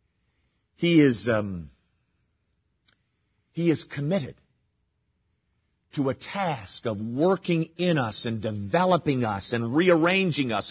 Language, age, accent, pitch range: English, 50-69, American, 150-240 Hz